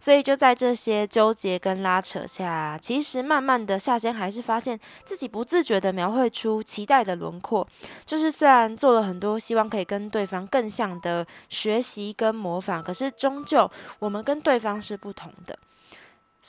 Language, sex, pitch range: Chinese, female, 190-255 Hz